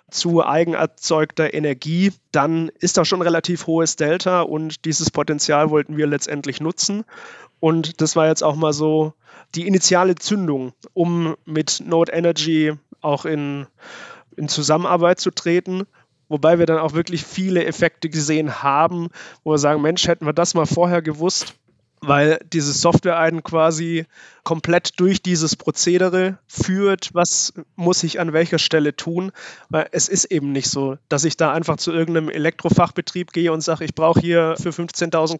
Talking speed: 160 wpm